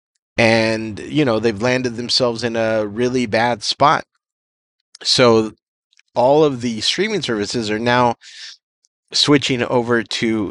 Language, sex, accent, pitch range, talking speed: English, male, American, 110-130 Hz, 125 wpm